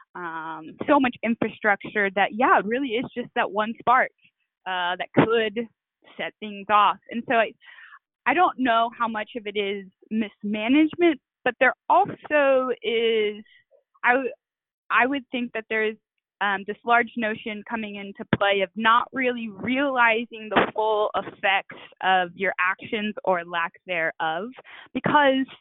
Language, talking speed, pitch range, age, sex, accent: English, 150 wpm, 185-240 Hz, 20-39, female, American